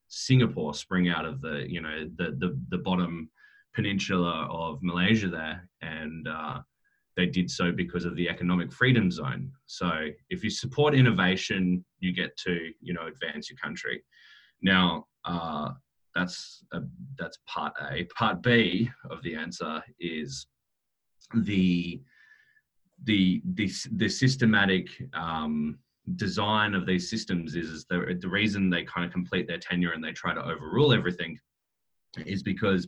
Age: 20-39